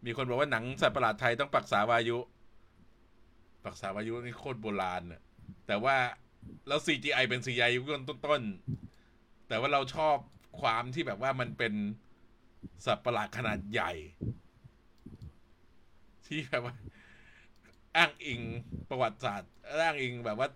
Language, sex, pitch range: Thai, male, 105-140 Hz